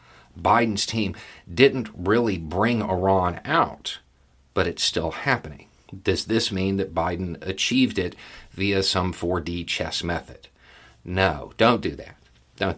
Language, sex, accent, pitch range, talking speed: English, male, American, 85-115 Hz, 130 wpm